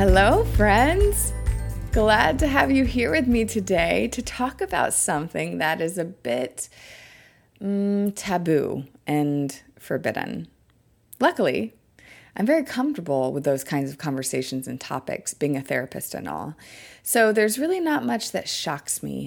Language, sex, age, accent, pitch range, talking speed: English, female, 30-49, American, 150-235 Hz, 145 wpm